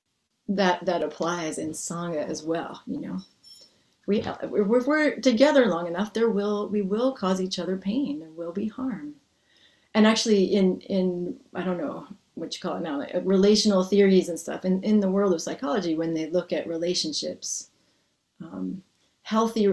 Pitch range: 170-210 Hz